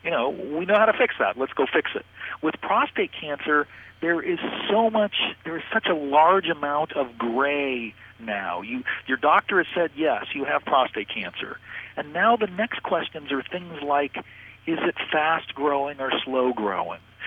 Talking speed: 175 wpm